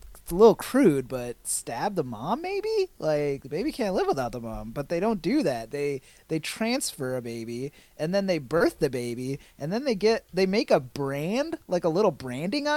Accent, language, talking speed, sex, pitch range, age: American, English, 205 wpm, male, 130-175 Hz, 30-49